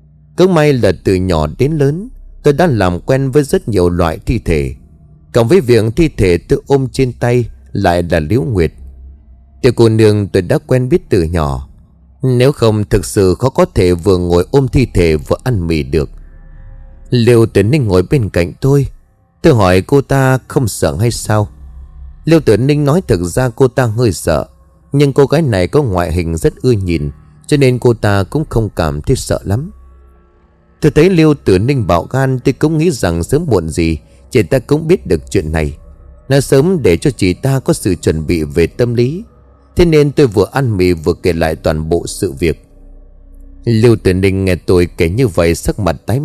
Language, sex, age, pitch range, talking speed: Vietnamese, male, 20-39, 80-135 Hz, 205 wpm